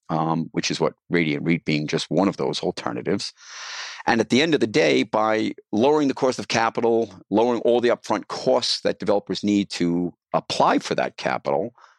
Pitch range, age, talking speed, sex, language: 85-100 Hz, 50-69, 190 wpm, male, English